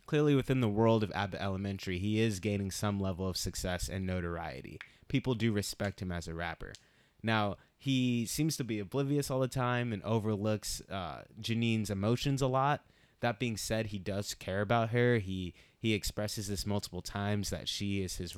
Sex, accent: male, American